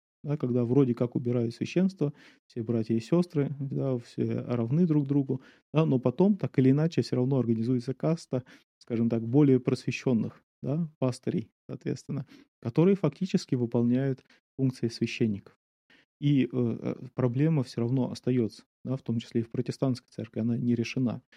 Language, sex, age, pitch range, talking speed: Russian, male, 30-49, 120-145 Hz, 150 wpm